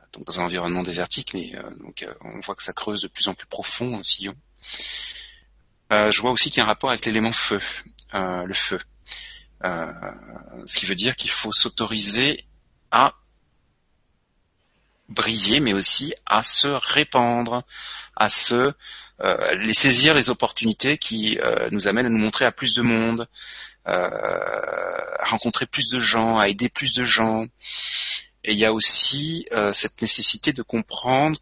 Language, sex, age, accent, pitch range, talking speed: French, male, 40-59, French, 110-135 Hz, 170 wpm